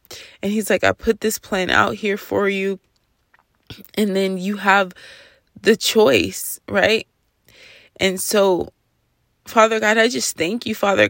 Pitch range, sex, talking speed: 195-225 Hz, female, 145 wpm